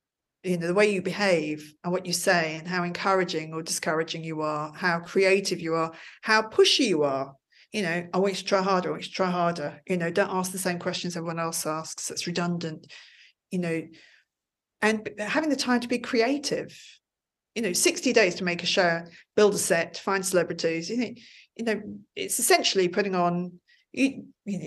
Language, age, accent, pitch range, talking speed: English, 40-59, British, 170-205 Hz, 195 wpm